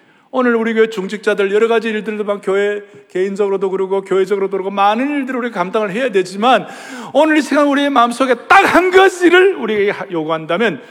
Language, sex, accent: Korean, male, native